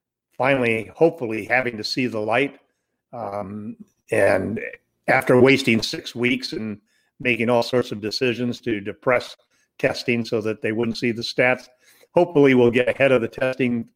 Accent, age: American, 50-69